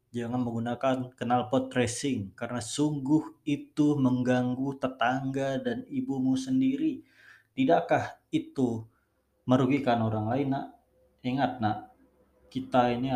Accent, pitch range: native, 120-155 Hz